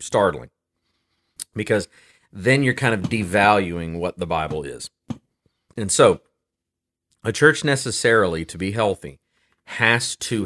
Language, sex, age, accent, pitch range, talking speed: English, male, 30-49, American, 85-115 Hz, 120 wpm